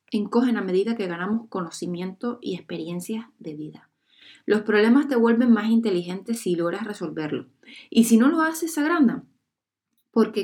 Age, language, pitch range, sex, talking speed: 20-39, Spanish, 190-245 Hz, female, 150 wpm